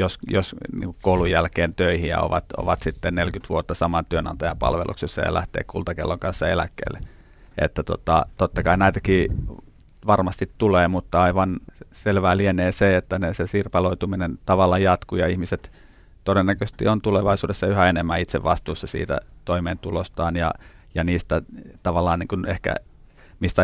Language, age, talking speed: Finnish, 30-49, 135 wpm